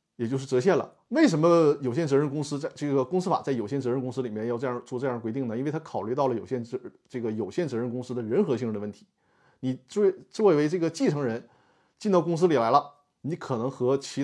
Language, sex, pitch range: Chinese, male, 120-165 Hz